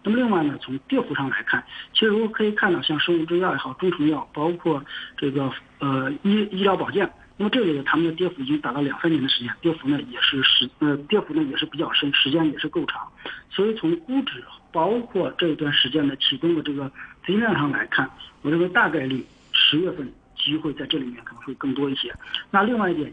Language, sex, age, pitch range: Chinese, male, 50-69, 140-180 Hz